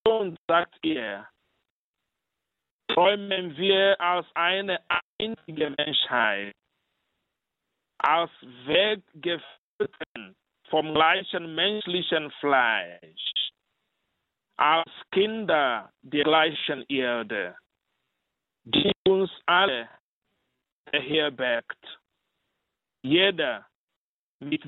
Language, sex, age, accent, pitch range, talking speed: German, male, 50-69, Nigerian, 140-190 Hz, 65 wpm